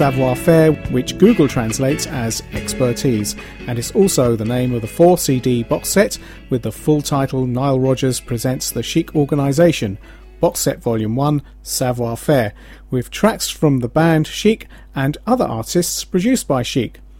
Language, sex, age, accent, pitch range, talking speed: English, male, 40-59, British, 125-165 Hz, 160 wpm